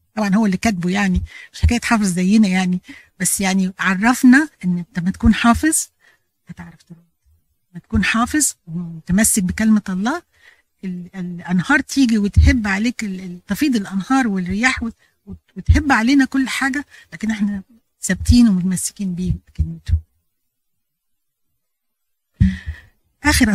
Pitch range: 175-225 Hz